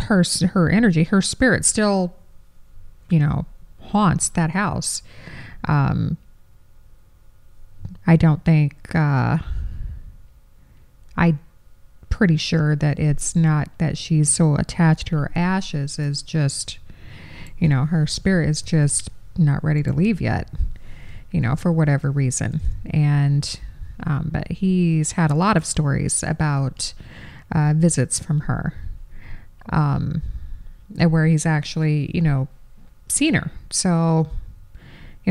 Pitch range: 140-170 Hz